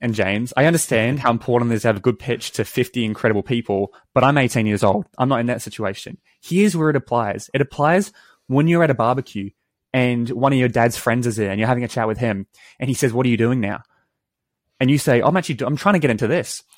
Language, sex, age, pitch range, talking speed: English, male, 20-39, 115-140 Hz, 260 wpm